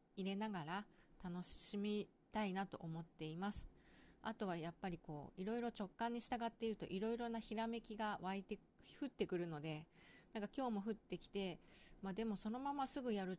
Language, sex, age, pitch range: Japanese, female, 20-39, 170-225 Hz